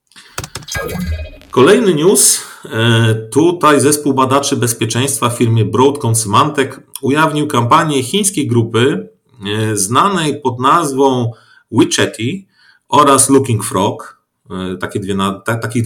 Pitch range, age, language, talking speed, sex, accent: 110-140 Hz, 40-59, Polish, 85 wpm, male, native